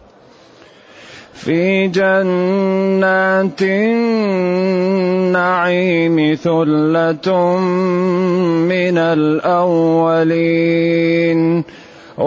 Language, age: Arabic, 30-49